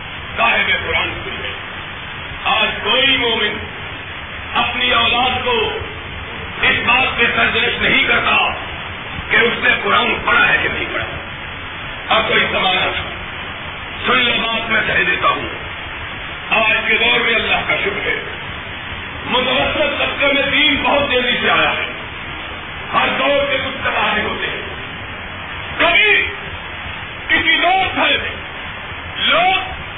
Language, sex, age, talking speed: Urdu, male, 50-69, 125 wpm